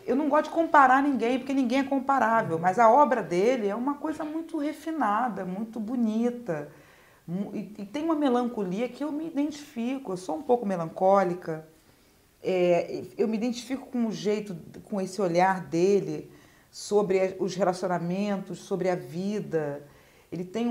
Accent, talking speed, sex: Brazilian, 155 wpm, female